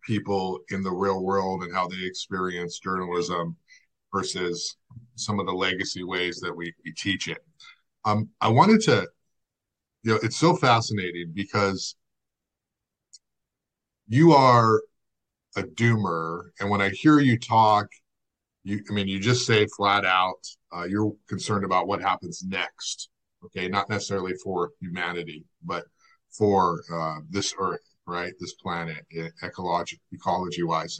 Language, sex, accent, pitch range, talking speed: English, male, American, 95-120 Hz, 135 wpm